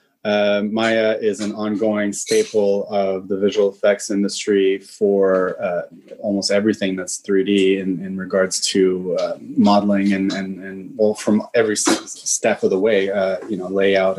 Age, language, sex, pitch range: 20-39, English, male, 100-115 Hz